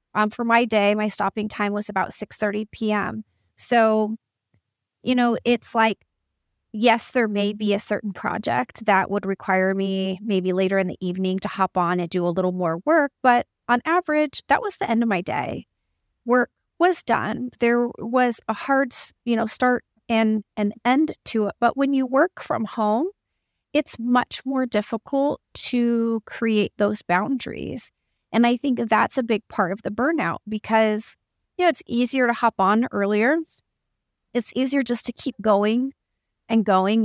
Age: 30-49